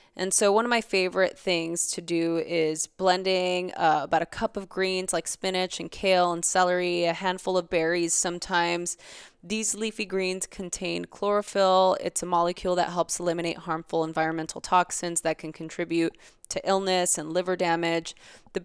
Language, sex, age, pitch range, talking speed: English, female, 20-39, 165-190 Hz, 165 wpm